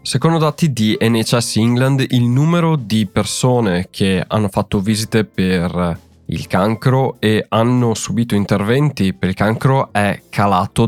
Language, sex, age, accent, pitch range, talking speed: Italian, male, 20-39, native, 100-125 Hz, 140 wpm